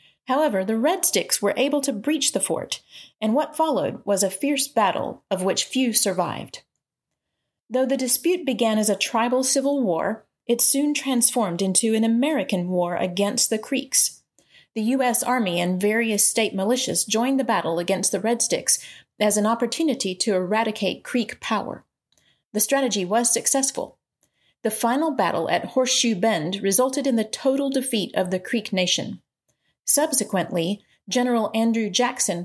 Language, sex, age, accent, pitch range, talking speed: English, female, 40-59, American, 195-265 Hz, 155 wpm